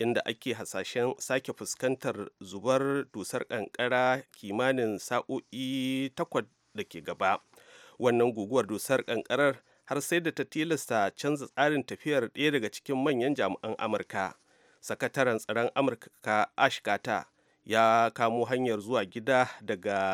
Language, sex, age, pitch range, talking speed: English, male, 40-59, 115-140 Hz, 115 wpm